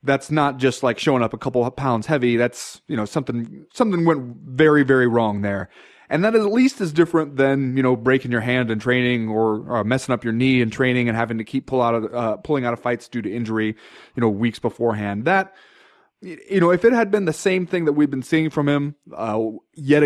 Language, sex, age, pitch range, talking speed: English, male, 30-49, 125-175 Hz, 240 wpm